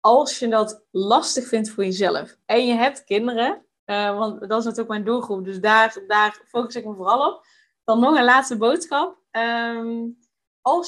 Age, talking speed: 20-39, 180 wpm